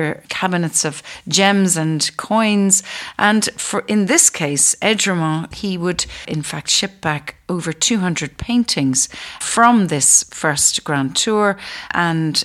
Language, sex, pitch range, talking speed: English, female, 150-190 Hz, 120 wpm